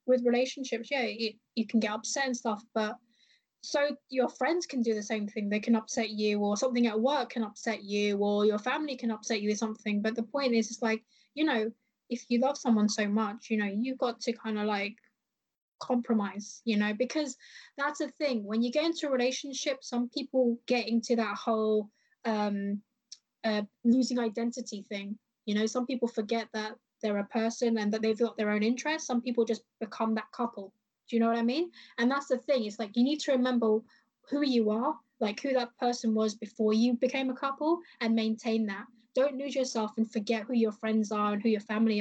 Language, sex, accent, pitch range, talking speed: English, female, British, 220-250 Hz, 215 wpm